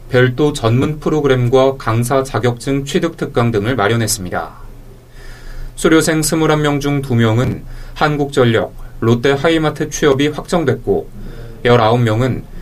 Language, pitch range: Korean, 120-150 Hz